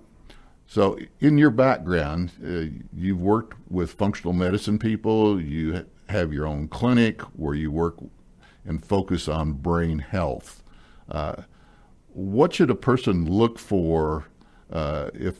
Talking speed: 130 wpm